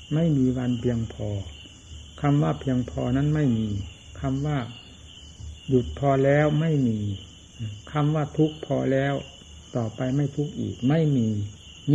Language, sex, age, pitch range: Thai, male, 60-79, 100-140 Hz